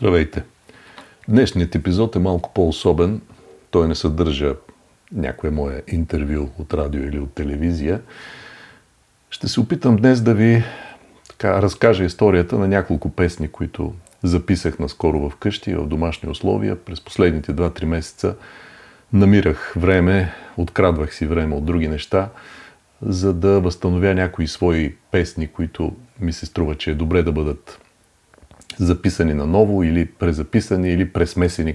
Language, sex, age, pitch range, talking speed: Bulgarian, male, 40-59, 80-100 Hz, 130 wpm